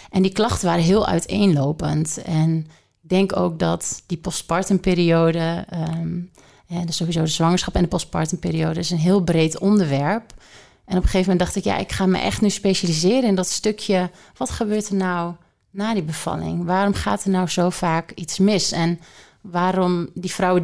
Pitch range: 170-195 Hz